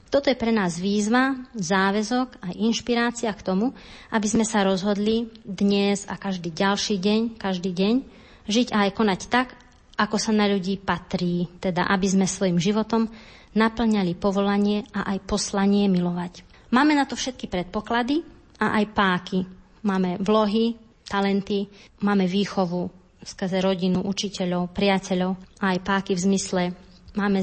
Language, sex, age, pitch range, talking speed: Slovak, female, 30-49, 185-215 Hz, 140 wpm